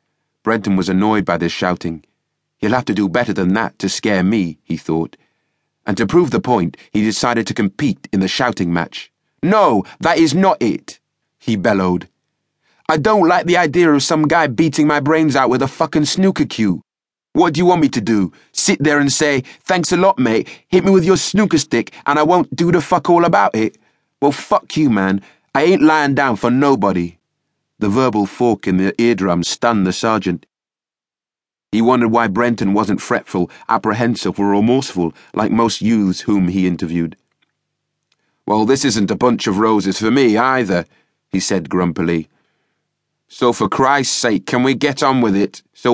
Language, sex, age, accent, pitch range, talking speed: English, male, 30-49, British, 95-145 Hz, 185 wpm